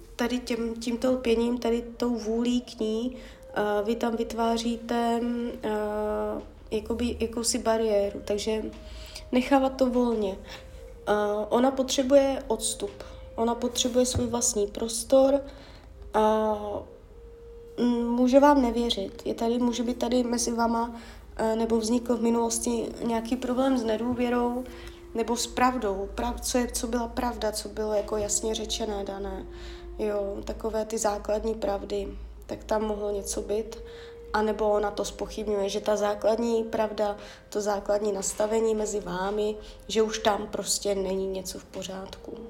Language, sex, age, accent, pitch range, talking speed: Czech, female, 20-39, native, 210-245 Hz, 130 wpm